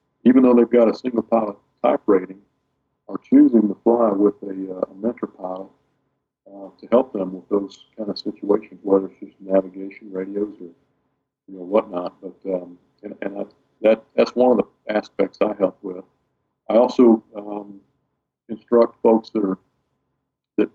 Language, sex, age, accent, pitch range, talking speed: English, male, 50-69, American, 95-110 Hz, 170 wpm